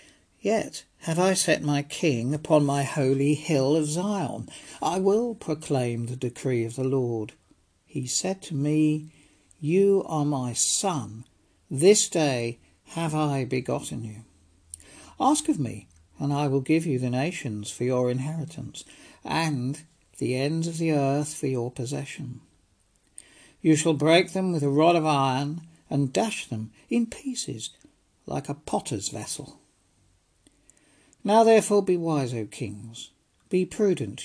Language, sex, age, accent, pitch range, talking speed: English, male, 60-79, British, 130-165 Hz, 145 wpm